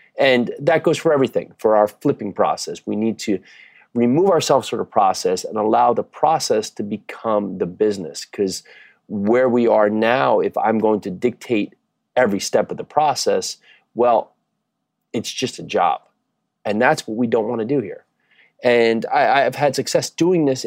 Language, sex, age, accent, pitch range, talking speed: English, male, 30-49, American, 110-145 Hz, 175 wpm